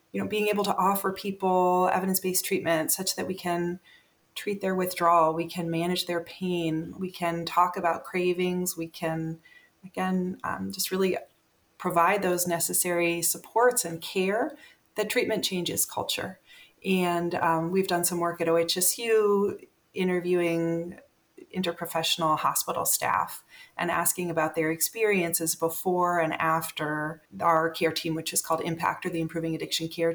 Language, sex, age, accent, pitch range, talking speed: English, female, 30-49, American, 170-200 Hz, 145 wpm